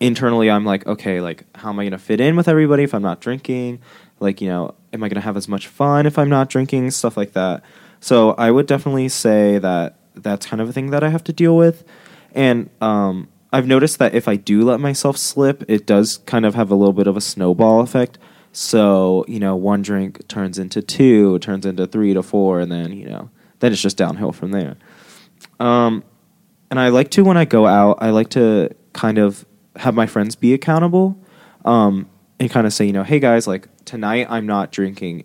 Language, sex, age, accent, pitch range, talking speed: English, male, 20-39, American, 100-135 Hz, 225 wpm